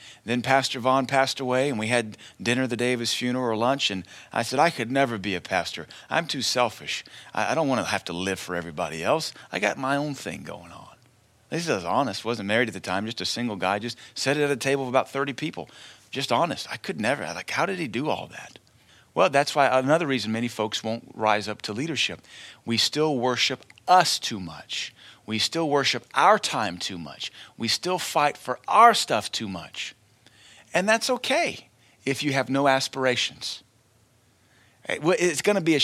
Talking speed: 210 wpm